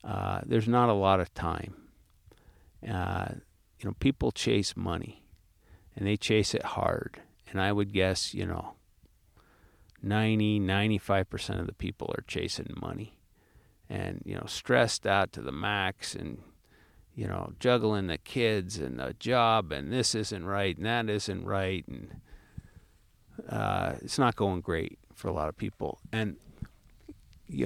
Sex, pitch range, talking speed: male, 90-110 Hz, 150 wpm